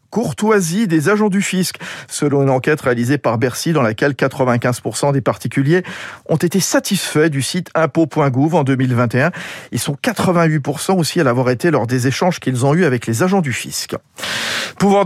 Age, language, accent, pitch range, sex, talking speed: 40-59, French, French, 135-180 Hz, male, 170 wpm